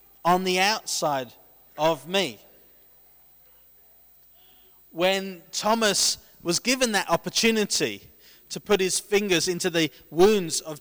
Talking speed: 105 wpm